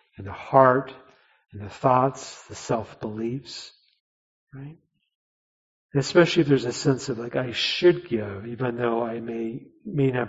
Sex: male